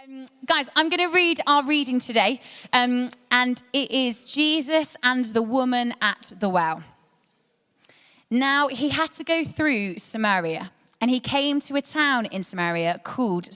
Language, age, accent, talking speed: English, 20-39, British, 160 wpm